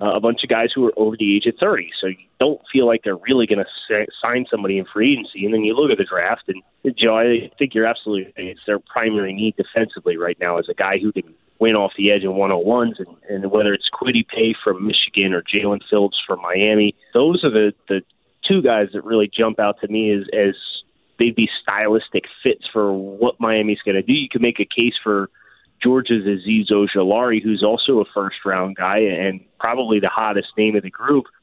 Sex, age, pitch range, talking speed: male, 30-49, 100-120 Hz, 225 wpm